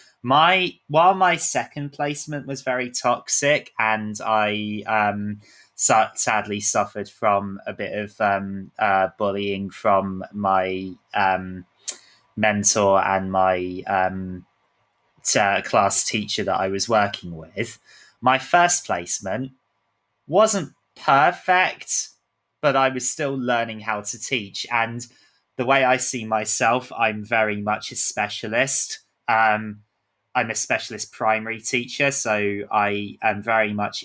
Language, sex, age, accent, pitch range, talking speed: English, male, 20-39, British, 100-130 Hz, 125 wpm